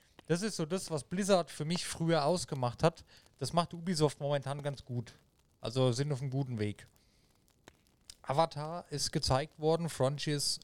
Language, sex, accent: German, male, German